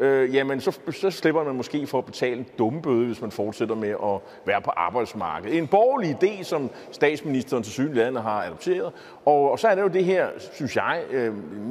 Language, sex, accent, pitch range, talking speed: Danish, male, native, 120-175 Hz, 205 wpm